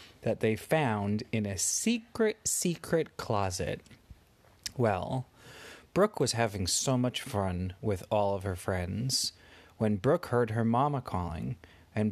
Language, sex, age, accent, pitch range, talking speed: English, male, 30-49, American, 110-170 Hz, 135 wpm